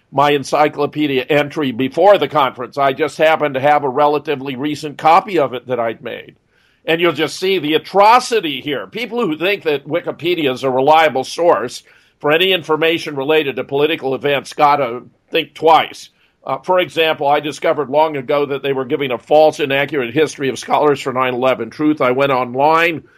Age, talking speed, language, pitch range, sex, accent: 50-69, 180 wpm, English, 135-165 Hz, male, American